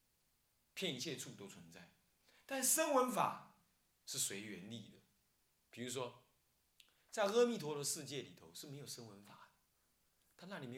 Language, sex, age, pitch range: Chinese, male, 30-49, 120-190 Hz